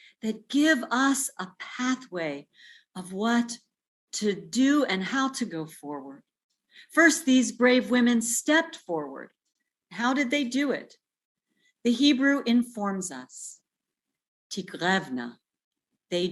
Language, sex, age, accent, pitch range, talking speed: English, female, 50-69, American, 185-255 Hz, 110 wpm